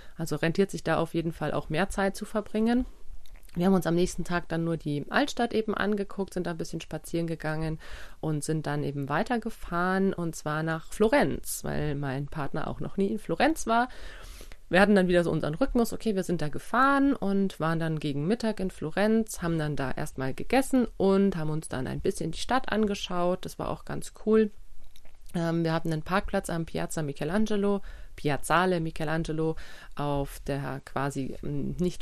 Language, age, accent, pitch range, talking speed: German, 30-49, German, 150-195 Hz, 185 wpm